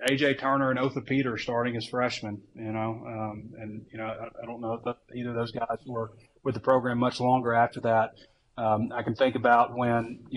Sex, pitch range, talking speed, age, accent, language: male, 115-125 Hz, 225 wpm, 30-49, American, English